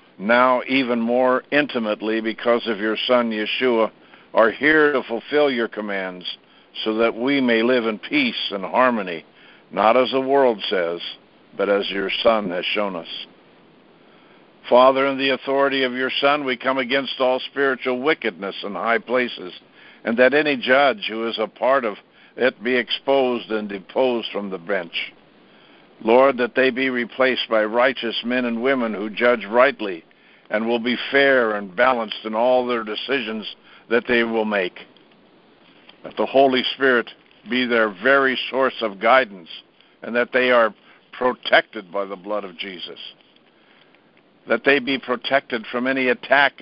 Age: 60-79